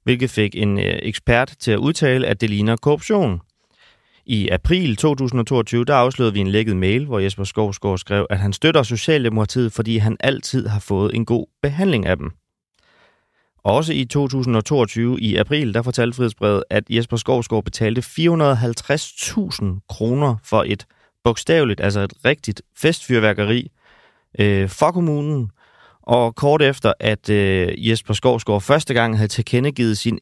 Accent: native